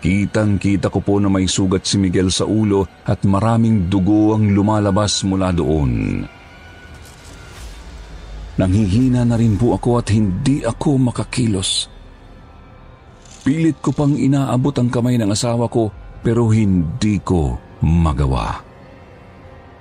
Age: 50-69